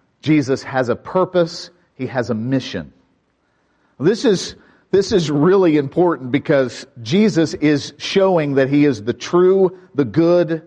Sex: male